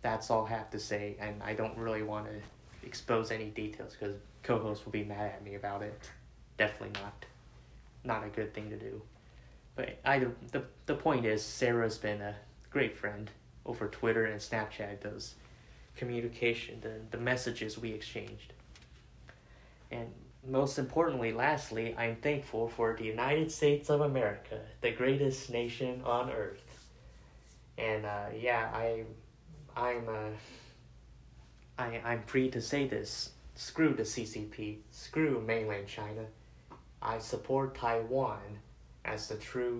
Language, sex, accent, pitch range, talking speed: English, male, American, 105-120 Hz, 140 wpm